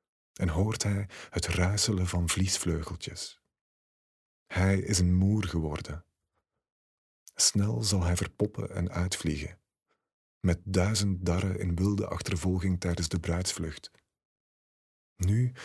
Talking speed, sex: 105 wpm, male